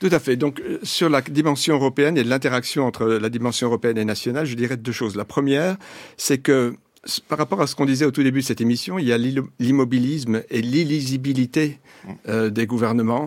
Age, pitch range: 60-79, 115-140 Hz